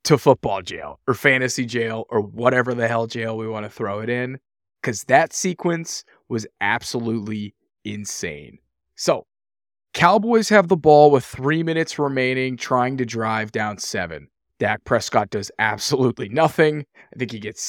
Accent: American